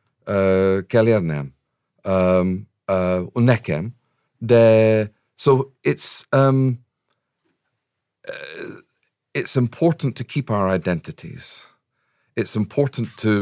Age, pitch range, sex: 50-69, 85-110 Hz, male